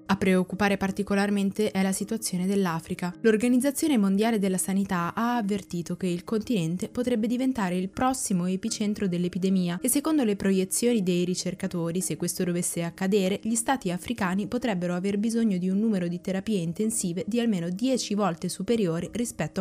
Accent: native